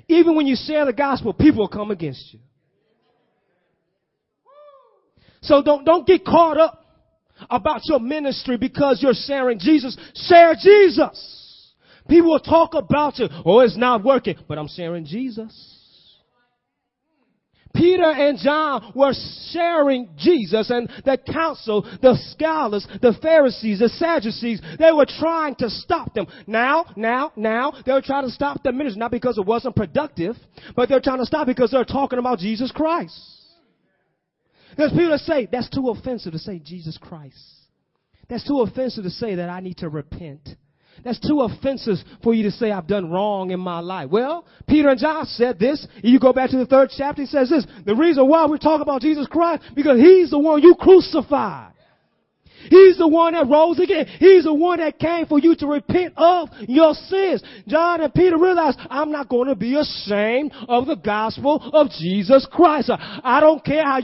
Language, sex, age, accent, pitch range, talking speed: English, male, 30-49, American, 230-310 Hz, 175 wpm